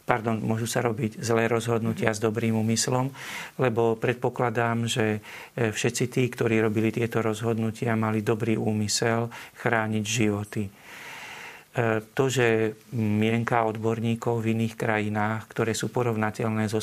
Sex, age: male, 40-59